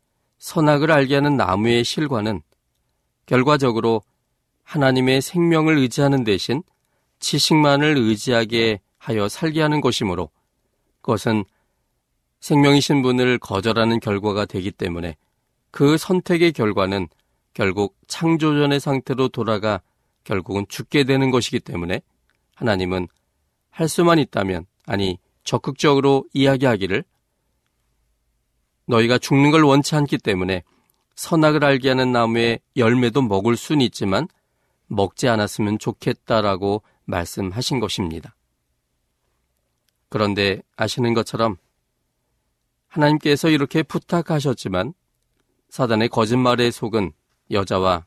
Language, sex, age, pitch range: Korean, male, 40-59, 95-140 Hz